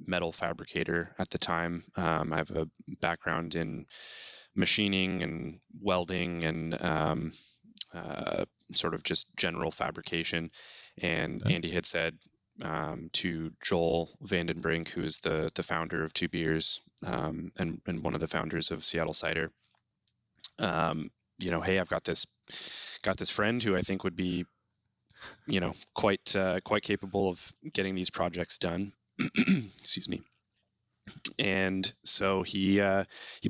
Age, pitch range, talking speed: 20-39, 80-95 Hz, 145 wpm